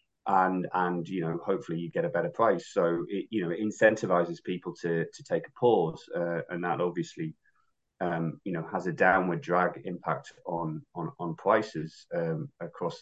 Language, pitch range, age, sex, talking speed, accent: English, 90-110 Hz, 30-49, male, 185 wpm, British